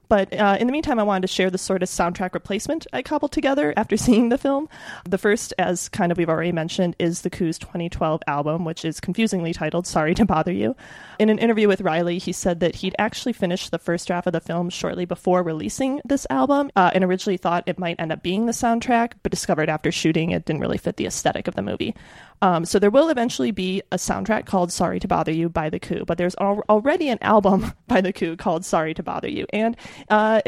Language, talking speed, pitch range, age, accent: English, 235 wpm, 170-215 Hz, 30-49, American